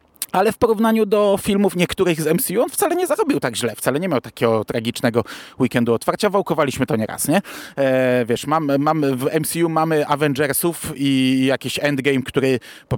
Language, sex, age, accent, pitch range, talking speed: Polish, male, 30-49, native, 130-185 Hz, 180 wpm